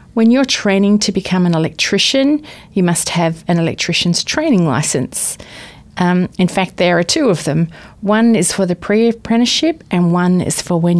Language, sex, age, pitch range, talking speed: English, female, 40-59, 175-210 Hz, 175 wpm